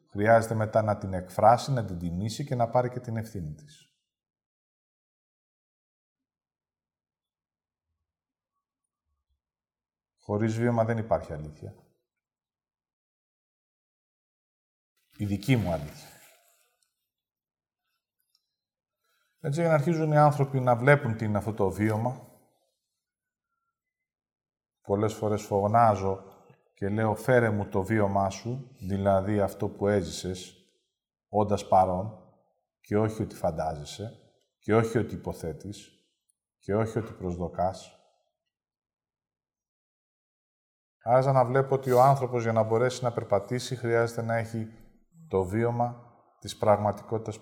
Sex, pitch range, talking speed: male, 100-125 Hz, 105 wpm